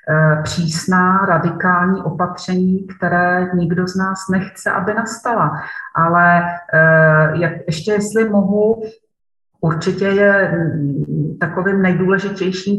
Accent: native